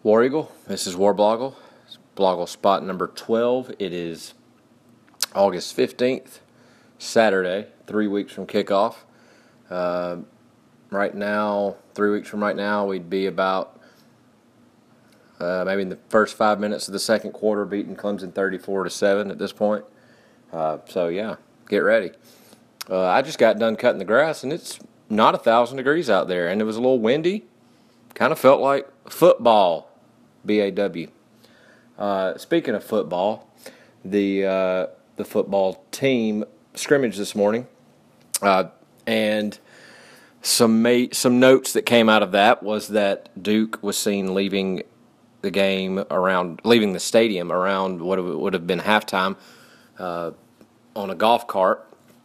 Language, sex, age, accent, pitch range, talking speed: English, male, 30-49, American, 95-110 Hz, 145 wpm